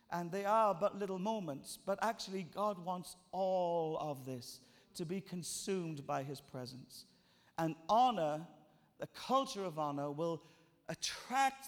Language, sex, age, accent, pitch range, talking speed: English, male, 50-69, British, 155-205 Hz, 140 wpm